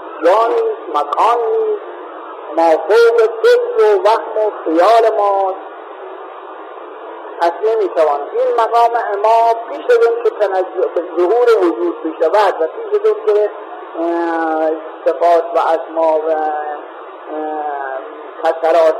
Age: 50-69